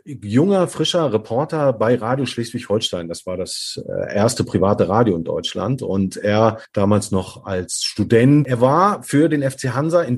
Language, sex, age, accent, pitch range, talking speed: German, male, 40-59, German, 120-155 Hz, 160 wpm